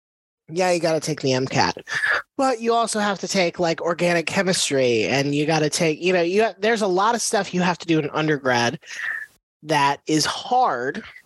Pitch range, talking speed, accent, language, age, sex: 130-185 Hz, 215 wpm, American, English, 20-39, male